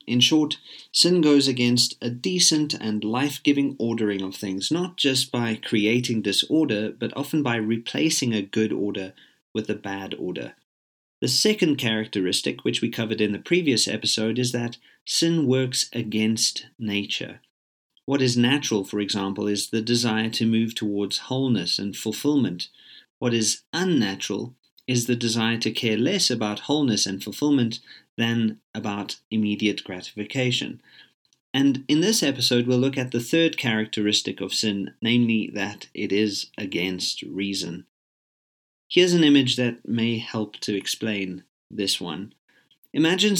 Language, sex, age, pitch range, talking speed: English, male, 40-59, 105-130 Hz, 145 wpm